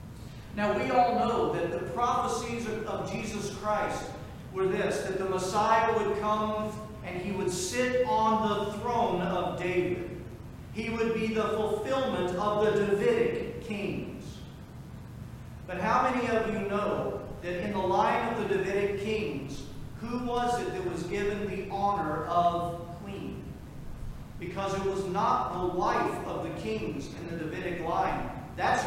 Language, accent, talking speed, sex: English, American, 150 wpm, male